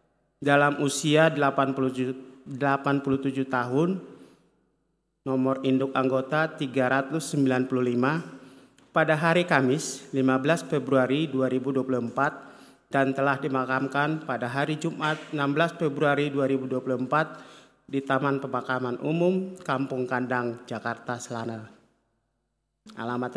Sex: male